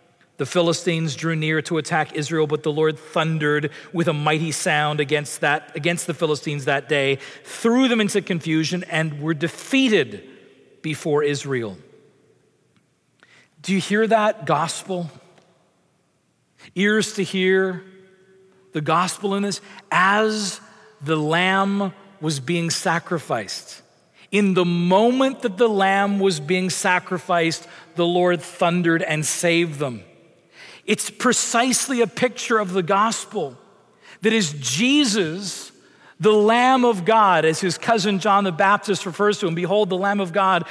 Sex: male